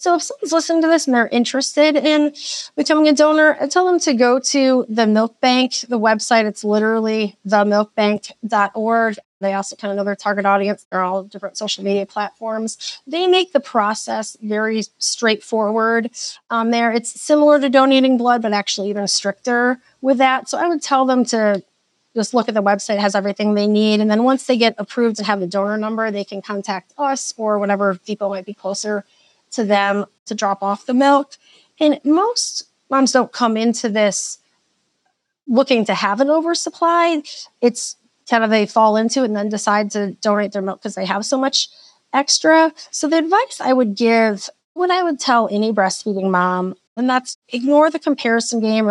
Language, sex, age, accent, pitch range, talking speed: English, female, 30-49, American, 205-265 Hz, 190 wpm